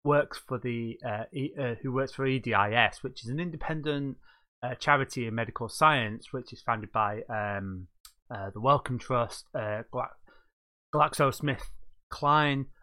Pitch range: 110-135 Hz